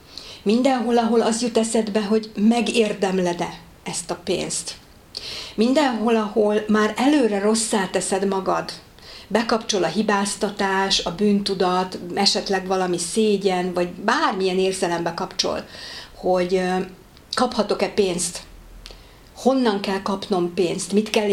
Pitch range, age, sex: 180-215 Hz, 50-69, female